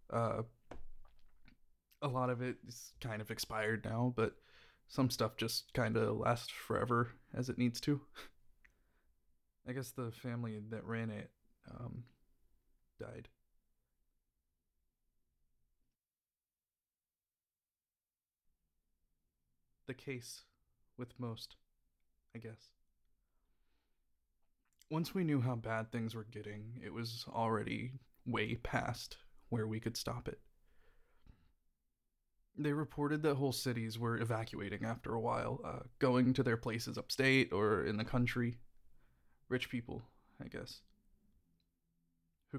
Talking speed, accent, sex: 115 wpm, American, male